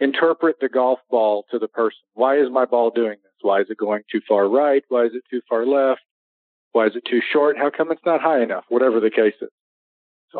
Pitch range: 120-140 Hz